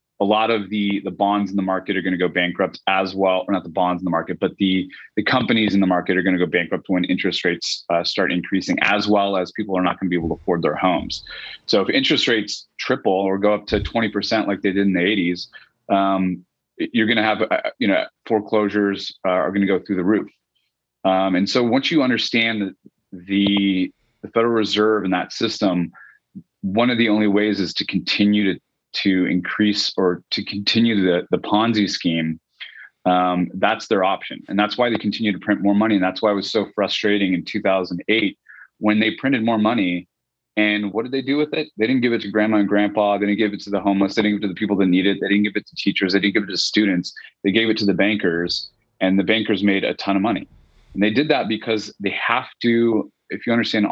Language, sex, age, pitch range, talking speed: English, male, 30-49, 95-105 Hz, 240 wpm